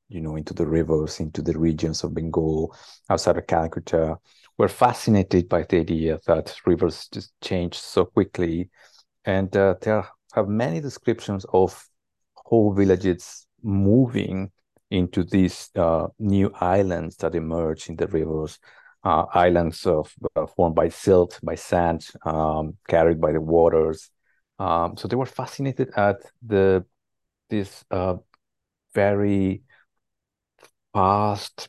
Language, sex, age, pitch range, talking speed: English, male, 50-69, 80-95 Hz, 130 wpm